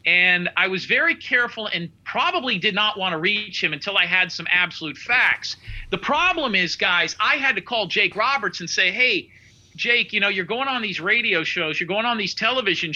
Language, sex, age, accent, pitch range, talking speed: English, male, 40-59, American, 175-230 Hz, 215 wpm